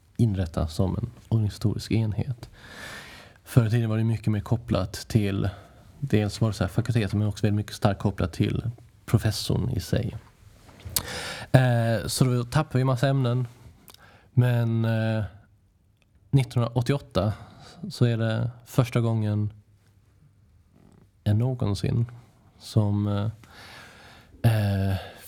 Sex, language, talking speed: male, English, 125 wpm